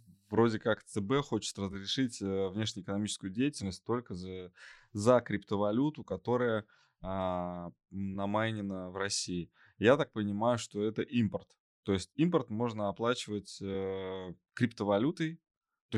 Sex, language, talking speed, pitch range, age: male, Russian, 105 wpm, 95-115 Hz, 20-39